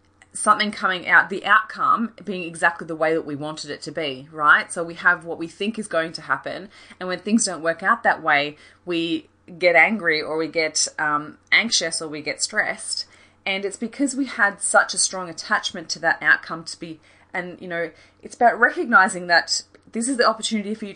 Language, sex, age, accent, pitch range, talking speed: English, female, 30-49, Australian, 155-205 Hz, 210 wpm